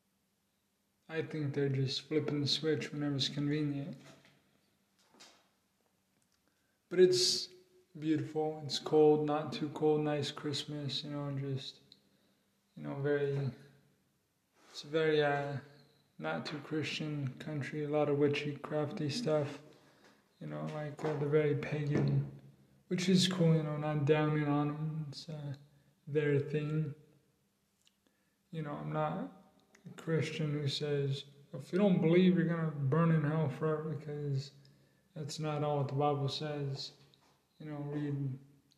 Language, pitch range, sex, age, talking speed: English, 140-155 Hz, male, 20-39, 140 wpm